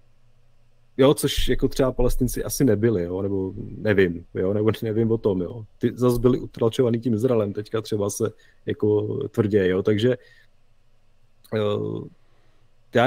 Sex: male